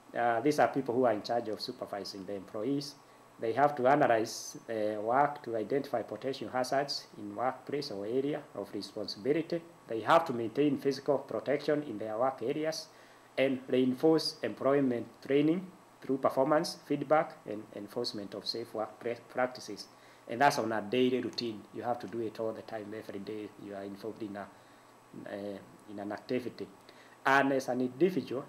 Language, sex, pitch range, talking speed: English, male, 110-140 Hz, 165 wpm